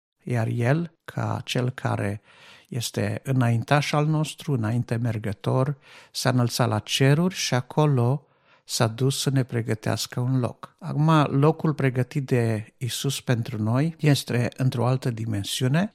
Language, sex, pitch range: Romanian, male, 115-145 Hz